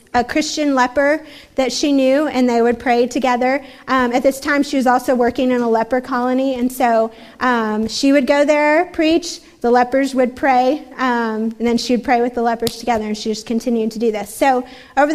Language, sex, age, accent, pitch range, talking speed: English, female, 30-49, American, 240-285 Hz, 215 wpm